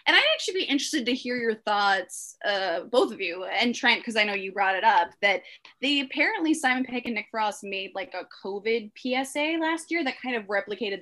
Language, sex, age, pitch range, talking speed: English, female, 20-39, 200-255 Hz, 225 wpm